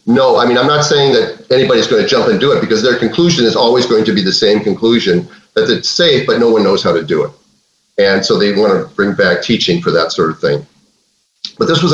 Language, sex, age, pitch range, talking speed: English, male, 40-59, 115-155 Hz, 260 wpm